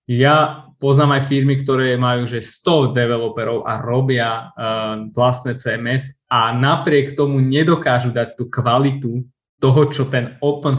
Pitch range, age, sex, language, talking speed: 125-150 Hz, 20-39, male, Slovak, 135 wpm